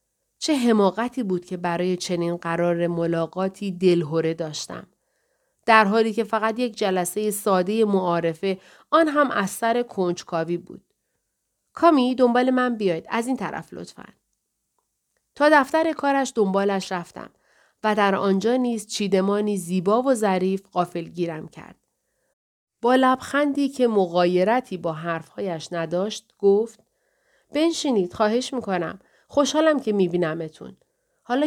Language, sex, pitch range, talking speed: Persian, female, 180-245 Hz, 120 wpm